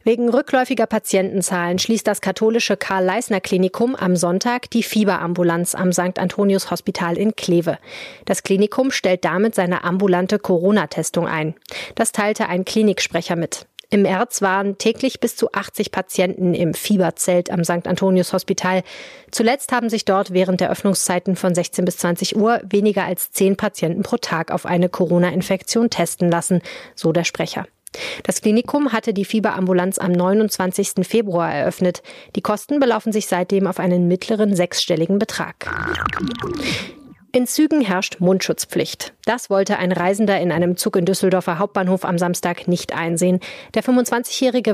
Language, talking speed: German, 145 wpm